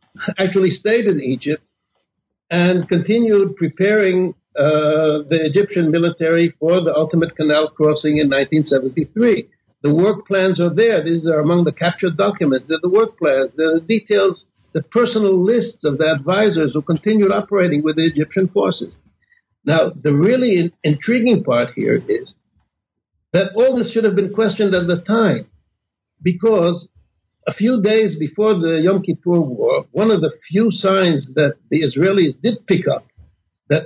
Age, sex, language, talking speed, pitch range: 60-79, male, English, 150 wpm, 155-210 Hz